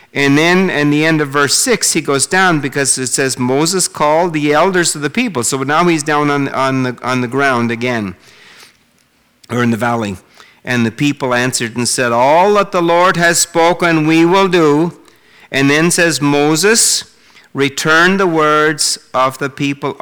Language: English